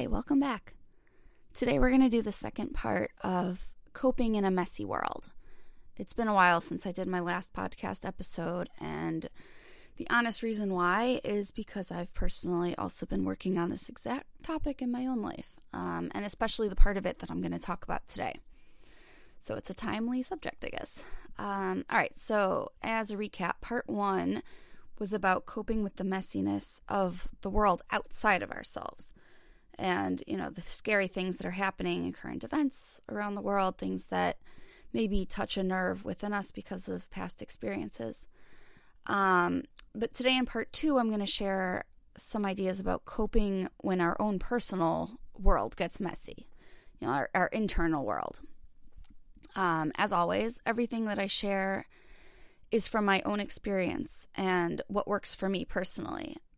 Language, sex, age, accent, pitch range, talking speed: English, female, 20-39, American, 180-225 Hz, 170 wpm